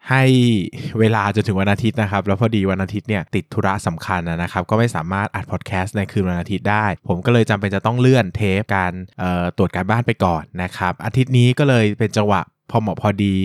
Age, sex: 20-39, male